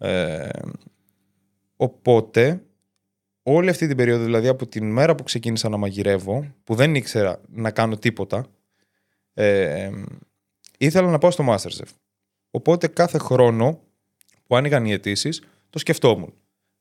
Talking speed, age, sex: 130 wpm, 20-39, male